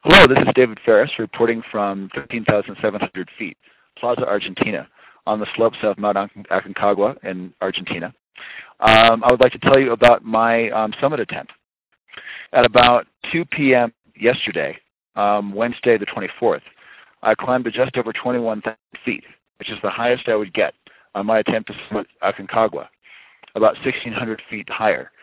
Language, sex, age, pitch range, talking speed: English, male, 40-59, 105-125 Hz, 150 wpm